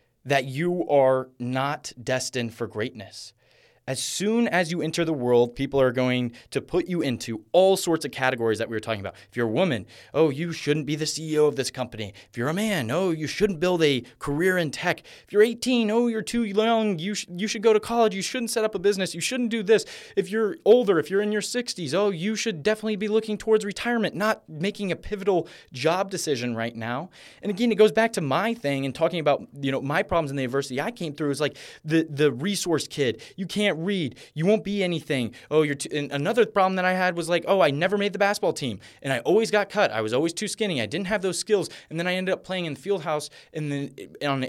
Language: English